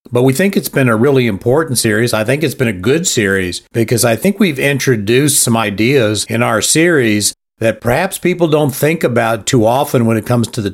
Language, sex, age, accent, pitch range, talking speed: English, male, 50-69, American, 105-130 Hz, 220 wpm